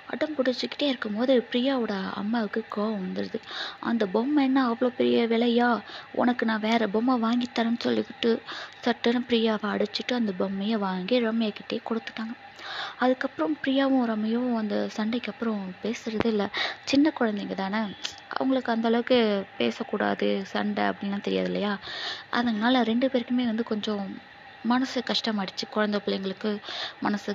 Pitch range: 210-250 Hz